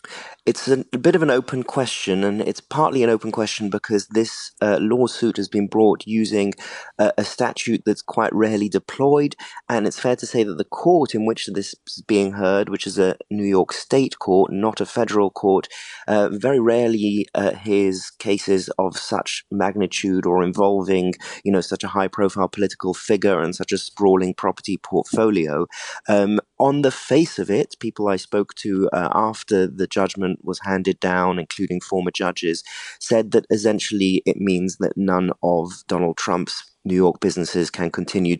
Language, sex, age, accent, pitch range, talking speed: English, male, 30-49, British, 90-105 Hz, 180 wpm